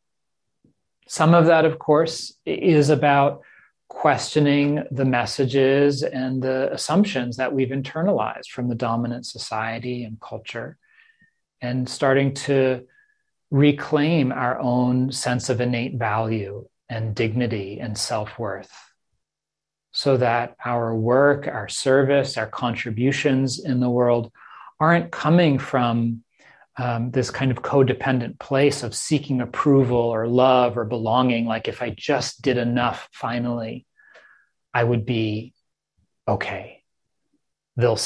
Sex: male